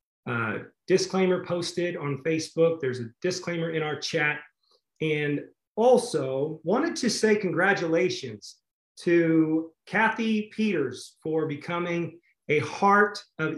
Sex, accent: male, American